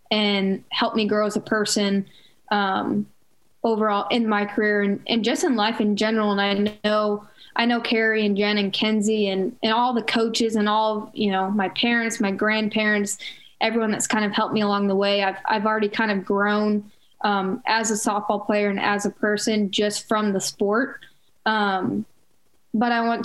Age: 10-29